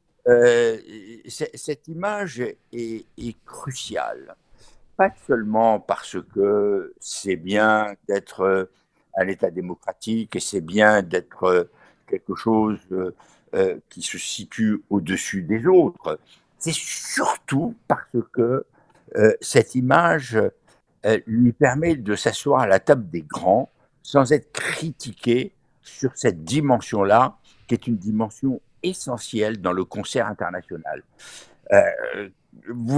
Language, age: French, 60-79